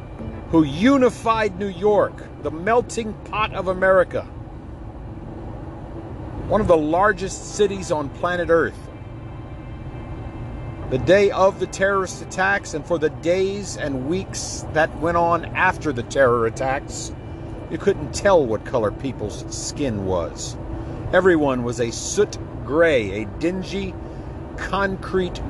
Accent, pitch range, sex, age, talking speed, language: American, 115-170 Hz, male, 50-69, 120 wpm, English